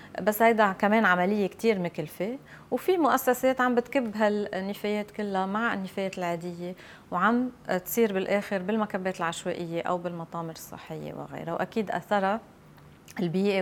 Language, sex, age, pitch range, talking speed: Arabic, female, 30-49, 175-215 Hz, 120 wpm